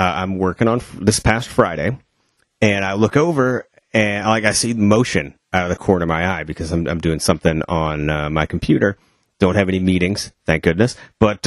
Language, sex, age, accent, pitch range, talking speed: English, male, 30-49, American, 85-110 Hz, 205 wpm